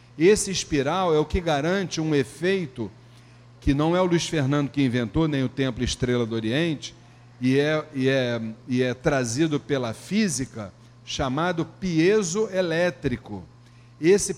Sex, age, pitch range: male, 40-59, 120-165 Hz